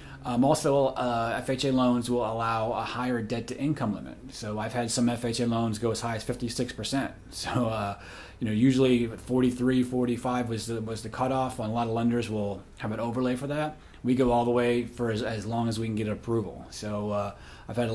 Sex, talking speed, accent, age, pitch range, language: male, 215 wpm, American, 30-49, 115-130 Hz, English